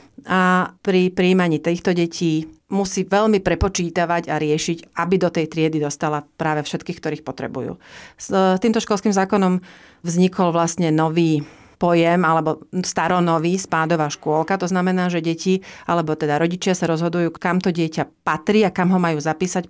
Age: 40-59